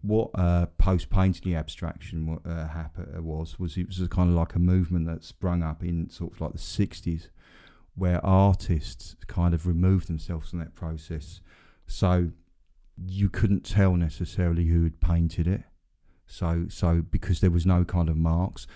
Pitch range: 80-90 Hz